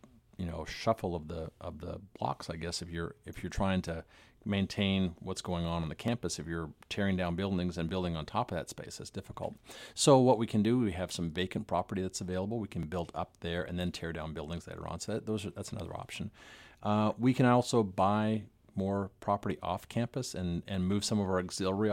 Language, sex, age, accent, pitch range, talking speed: English, male, 40-59, American, 90-110 Hz, 230 wpm